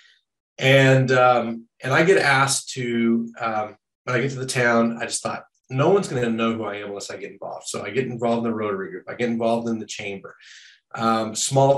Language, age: English, 40-59